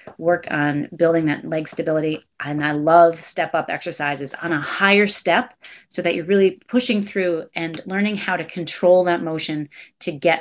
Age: 30-49